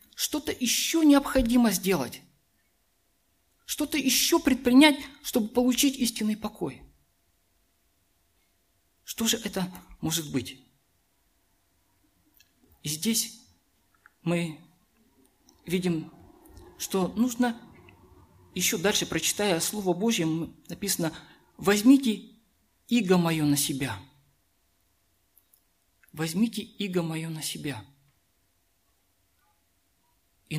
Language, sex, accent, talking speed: Russian, male, native, 80 wpm